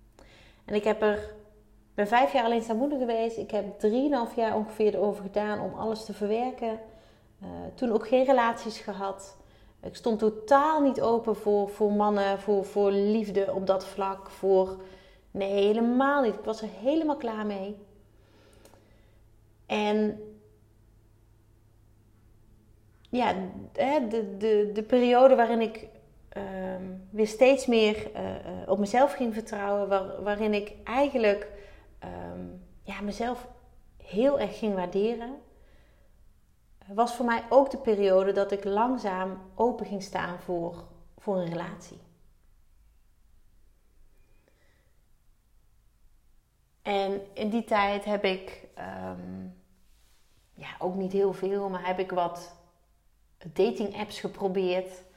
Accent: Dutch